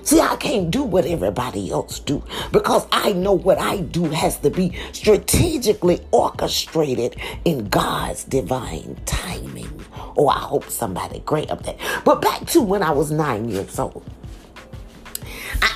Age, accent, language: 40-59, American, English